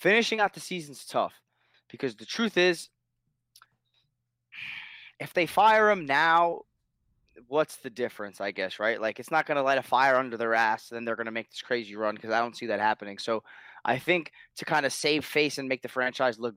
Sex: male